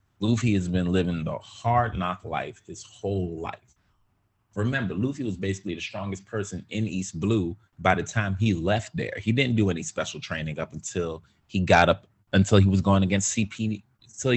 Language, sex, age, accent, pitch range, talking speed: English, male, 30-49, American, 95-115 Hz, 190 wpm